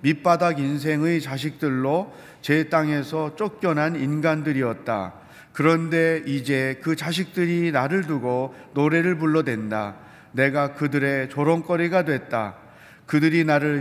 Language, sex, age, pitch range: Korean, male, 40-59, 140-175 Hz